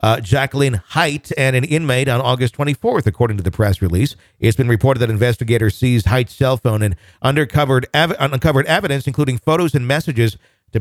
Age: 50-69